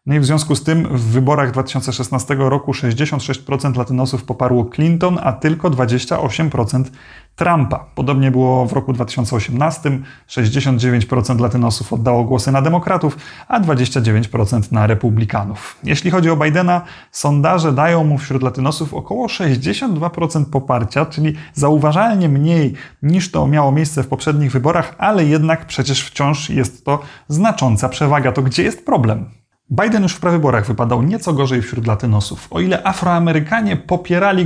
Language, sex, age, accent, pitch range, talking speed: Polish, male, 30-49, native, 130-165 Hz, 140 wpm